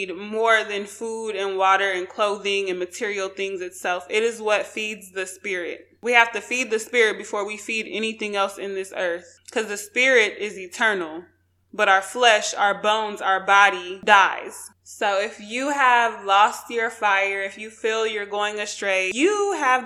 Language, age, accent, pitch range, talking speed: English, 20-39, American, 190-220 Hz, 180 wpm